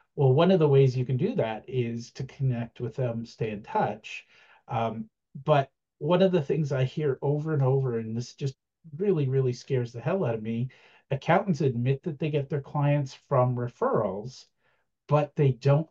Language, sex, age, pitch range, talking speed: English, male, 50-69, 125-150 Hz, 190 wpm